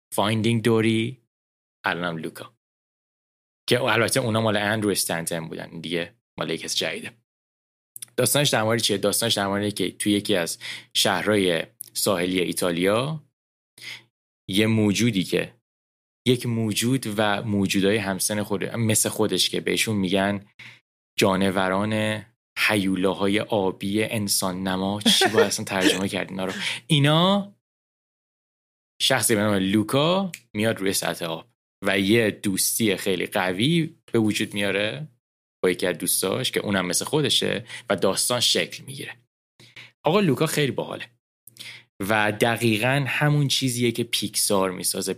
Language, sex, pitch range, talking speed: Persian, male, 95-115 Hz, 125 wpm